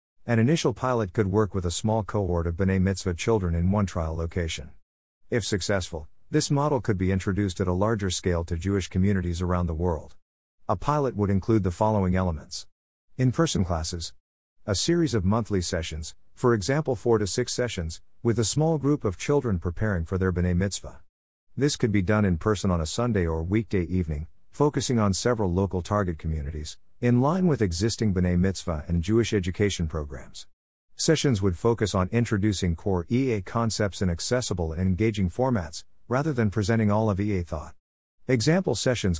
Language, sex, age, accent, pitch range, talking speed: English, male, 50-69, American, 90-120 Hz, 175 wpm